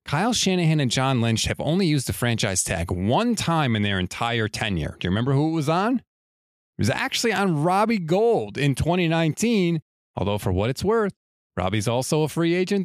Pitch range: 115-185 Hz